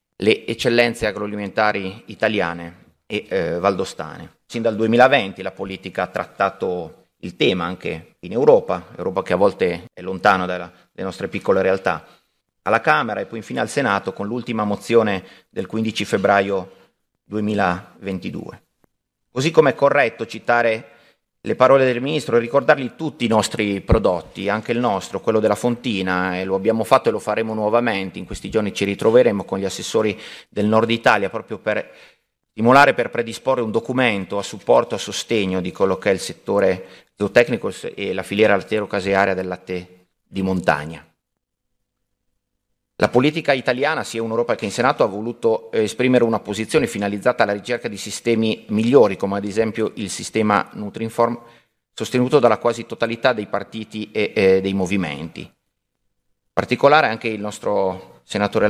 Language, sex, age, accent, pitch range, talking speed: Italian, male, 30-49, native, 95-115 Hz, 155 wpm